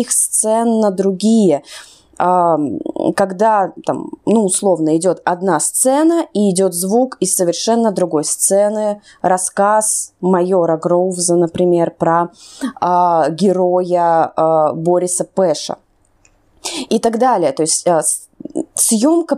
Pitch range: 175-230 Hz